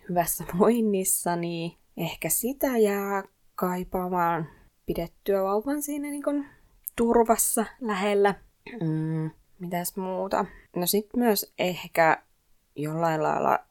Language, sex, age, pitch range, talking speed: Finnish, female, 20-39, 160-210 Hz, 100 wpm